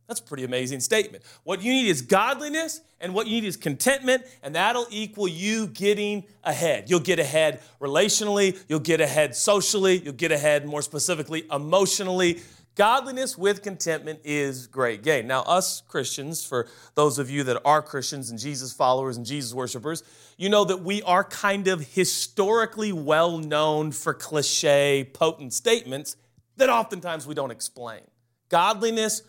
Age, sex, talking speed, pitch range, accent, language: 40-59, male, 160 wpm, 140-190 Hz, American, English